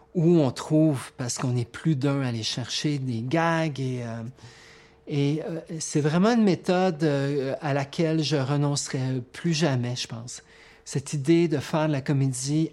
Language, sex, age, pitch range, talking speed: French, male, 40-59, 130-155 Hz, 175 wpm